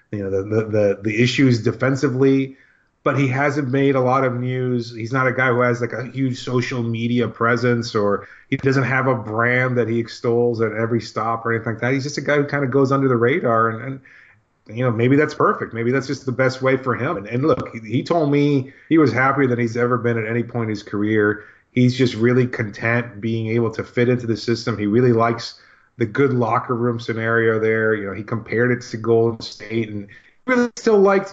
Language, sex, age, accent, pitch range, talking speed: English, male, 30-49, American, 115-135 Hz, 230 wpm